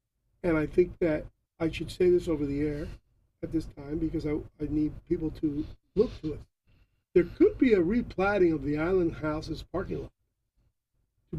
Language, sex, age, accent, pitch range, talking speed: English, male, 40-59, American, 115-185 Hz, 185 wpm